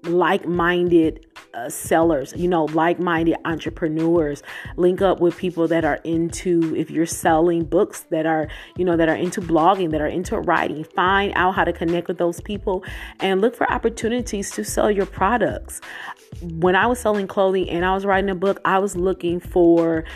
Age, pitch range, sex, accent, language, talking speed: 30-49, 160-190 Hz, female, American, English, 180 wpm